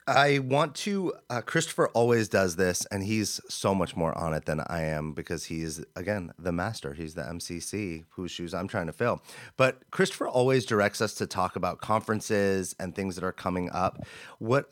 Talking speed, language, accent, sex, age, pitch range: 200 wpm, English, American, male, 30-49, 85-105 Hz